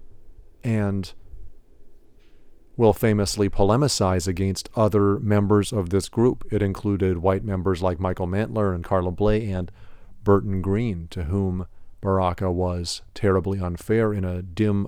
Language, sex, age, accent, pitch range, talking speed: English, male, 40-59, American, 95-105 Hz, 130 wpm